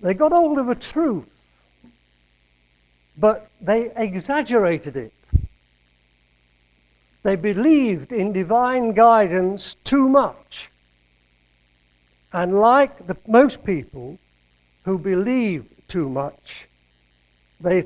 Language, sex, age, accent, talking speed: English, male, 60-79, British, 85 wpm